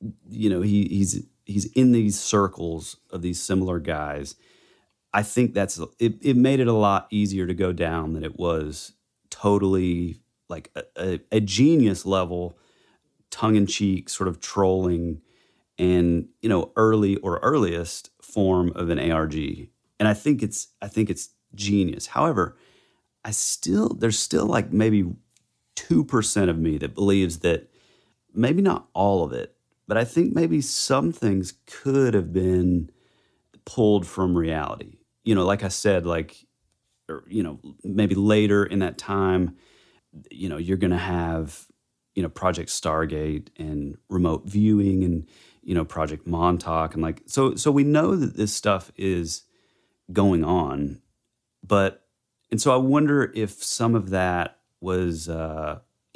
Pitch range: 85-105 Hz